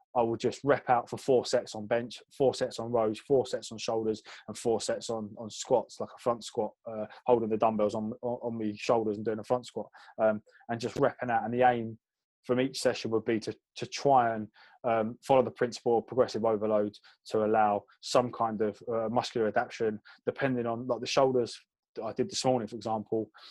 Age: 20-39